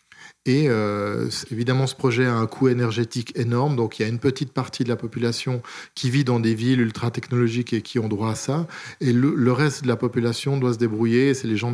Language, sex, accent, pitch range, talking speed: French, male, French, 115-130 Hz, 235 wpm